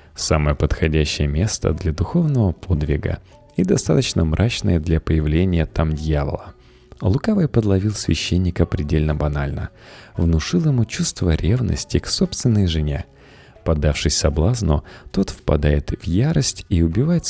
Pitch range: 80-110 Hz